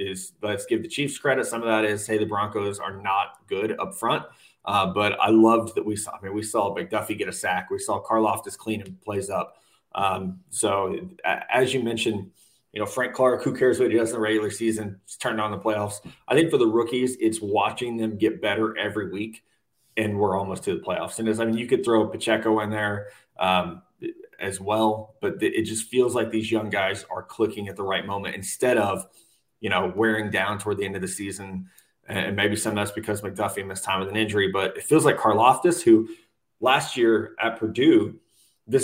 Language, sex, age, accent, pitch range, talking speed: English, male, 20-39, American, 100-115 Hz, 225 wpm